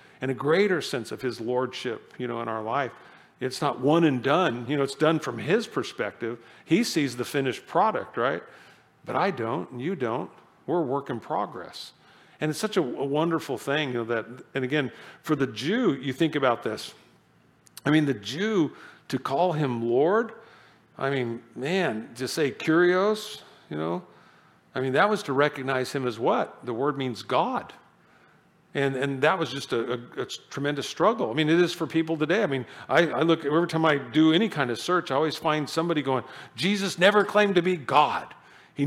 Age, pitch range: 50-69, 130-165 Hz